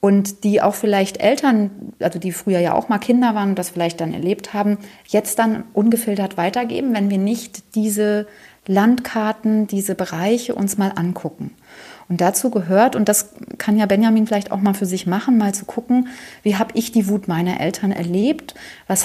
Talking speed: 185 wpm